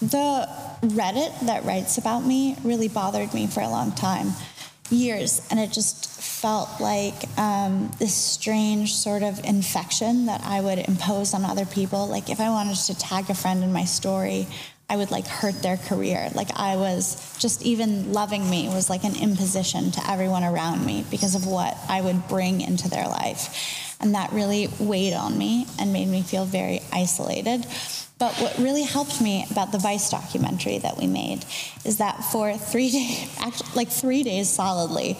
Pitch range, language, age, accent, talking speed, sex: 190-235 Hz, English, 10-29, American, 180 wpm, female